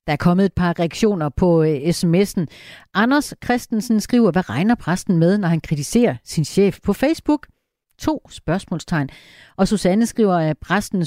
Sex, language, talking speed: female, Danish, 155 wpm